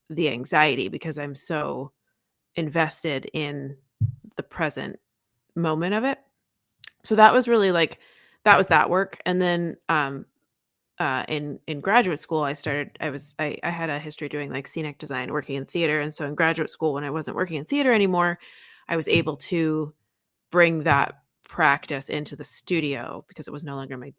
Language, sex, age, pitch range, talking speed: English, female, 20-39, 145-175 Hz, 180 wpm